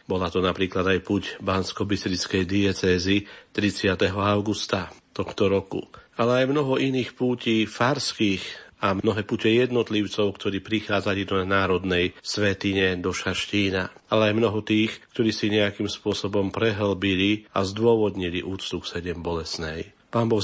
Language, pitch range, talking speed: Slovak, 95-105 Hz, 130 wpm